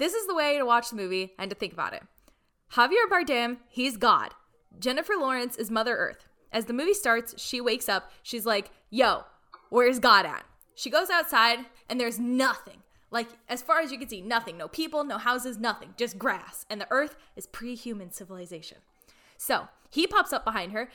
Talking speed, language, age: 195 wpm, English, 10-29